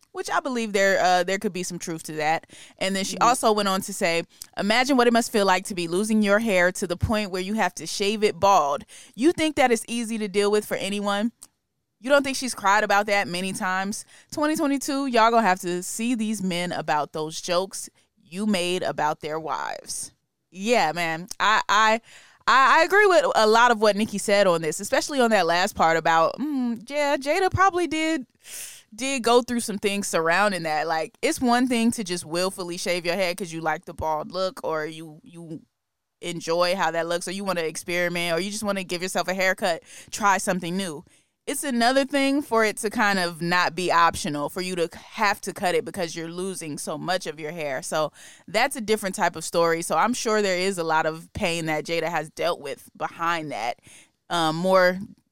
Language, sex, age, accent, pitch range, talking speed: English, female, 20-39, American, 170-225 Hz, 215 wpm